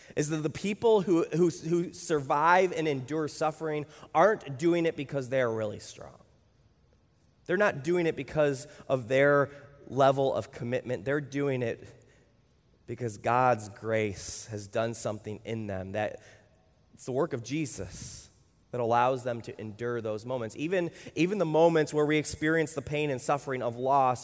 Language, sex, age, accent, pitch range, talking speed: English, male, 20-39, American, 120-155 Hz, 160 wpm